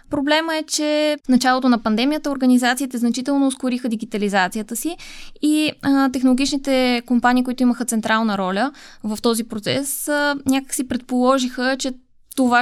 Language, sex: Bulgarian, female